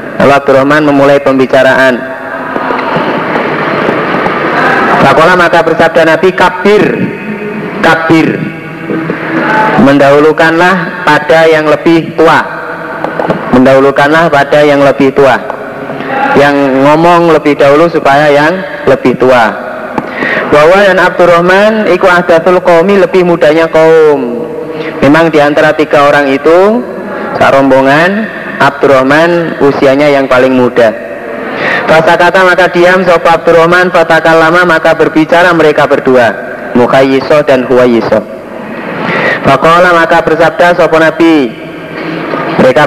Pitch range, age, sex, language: 145-175 Hz, 30-49, male, Indonesian